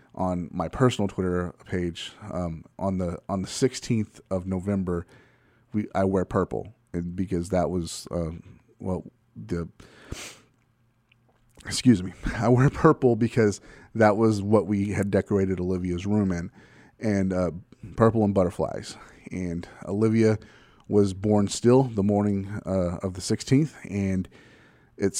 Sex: male